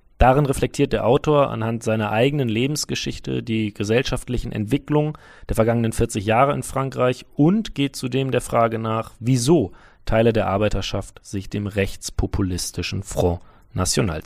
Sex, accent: male, German